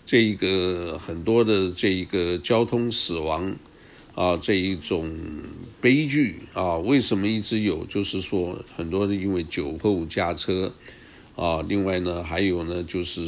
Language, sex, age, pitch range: Chinese, male, 60-79, 90-110 Hz